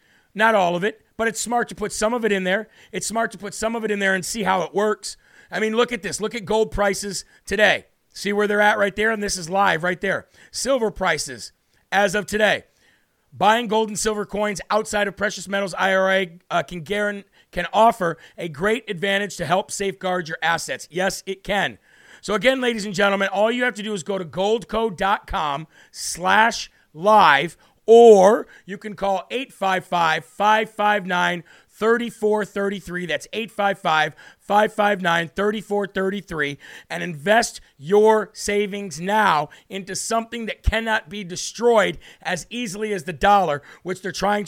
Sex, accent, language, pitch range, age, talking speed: male, American, English, 180-215 Hz, 40-59, 165 wpm